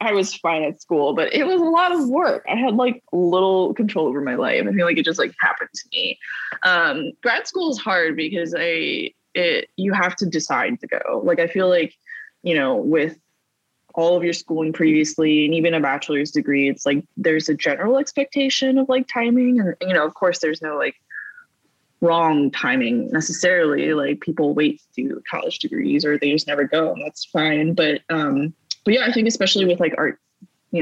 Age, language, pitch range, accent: 20-39, English, 150-225 Hz, American